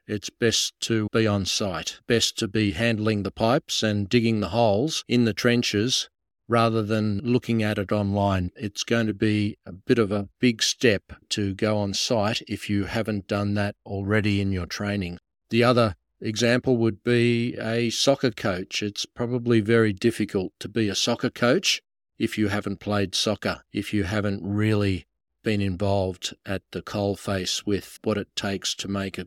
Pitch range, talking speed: 95-115 Hz, 180 wpm